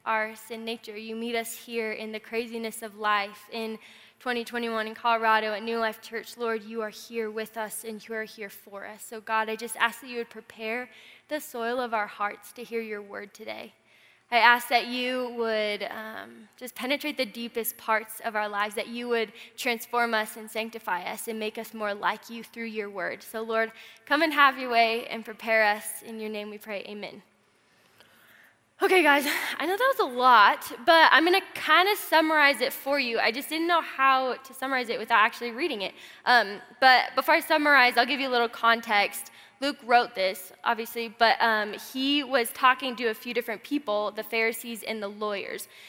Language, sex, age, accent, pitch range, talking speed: English, female, 10-29, American, 220-255 Hz, 205 wpm